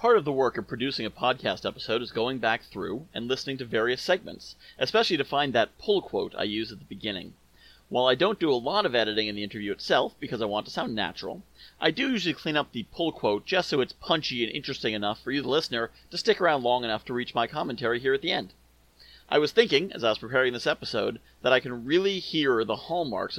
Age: 30-49